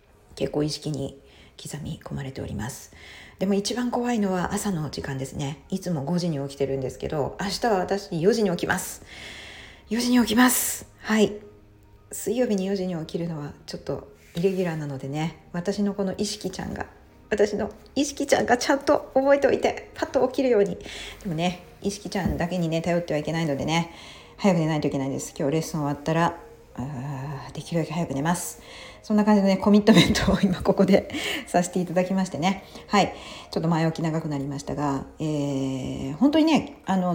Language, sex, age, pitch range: Japanese, female, 40-59, 155-220 Hz